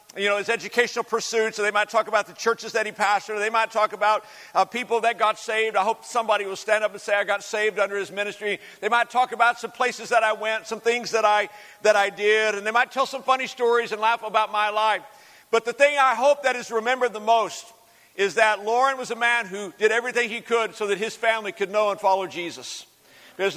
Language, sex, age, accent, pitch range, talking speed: English, male, 50-69, American, 195-230 Hz, 245 wpm